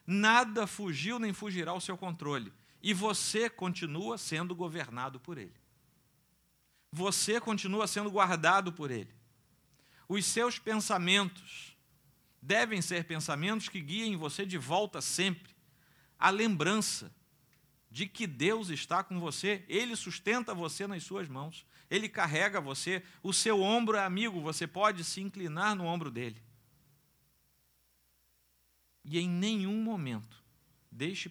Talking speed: 125 wpm